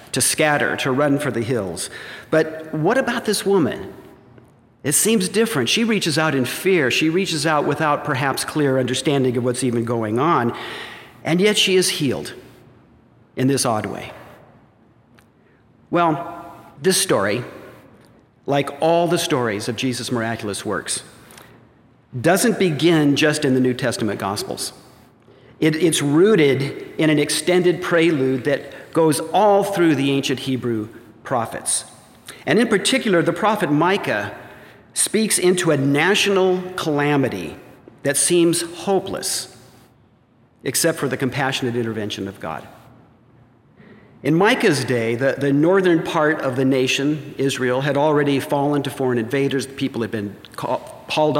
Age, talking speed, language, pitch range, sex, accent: 50-69, 140 wpm, English, 130-170 Hz, male, American